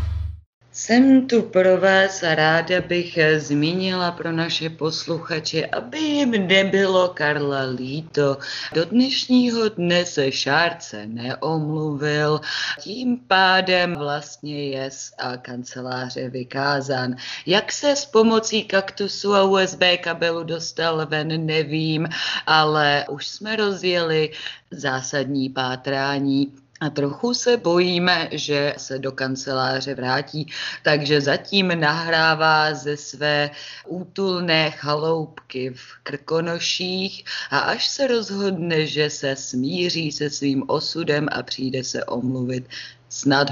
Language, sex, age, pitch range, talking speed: Czech, female, 30-49, 135-180 Hz, 110 wpm